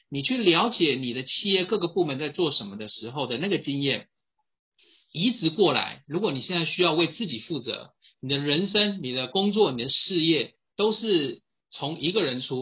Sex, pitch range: male, 135-190 Hz